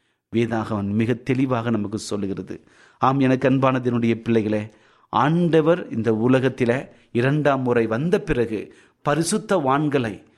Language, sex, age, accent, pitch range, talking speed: Tamil, male, 30-49, native, 115-150 Hz, 105 wpm